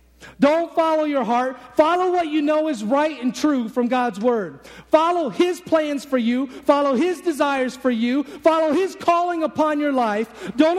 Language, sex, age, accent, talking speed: English, male, 40-59, American, 180 wpm